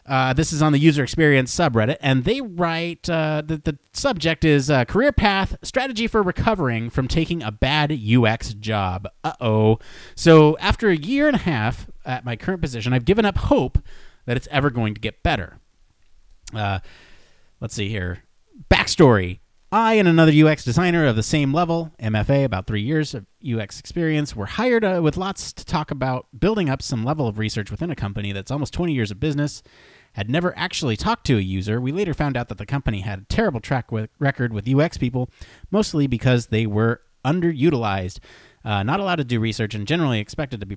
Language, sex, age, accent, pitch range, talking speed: English, male, 30-49, American, 110-165 Hz, 195 wpm